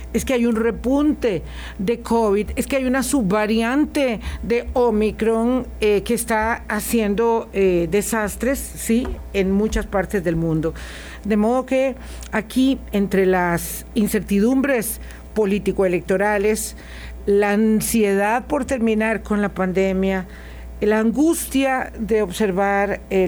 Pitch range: 170-225 Hz